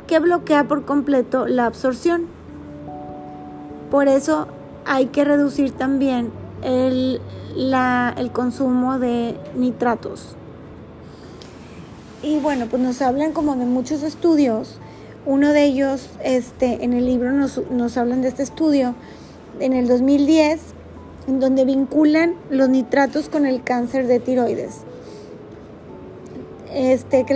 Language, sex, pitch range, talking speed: Spanish, female, 250-295 Hz, 115 wpm